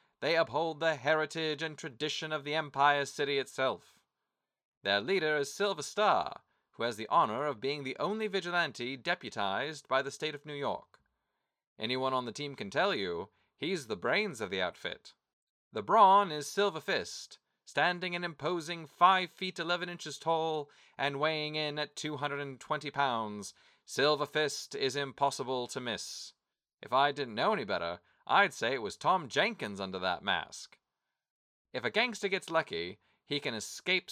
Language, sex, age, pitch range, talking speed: English, male, 30-49, 140-180 Hz, 165 wpm